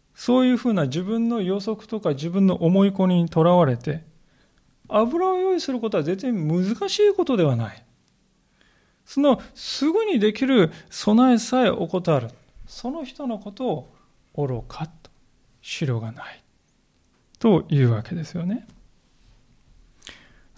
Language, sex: Japanese, male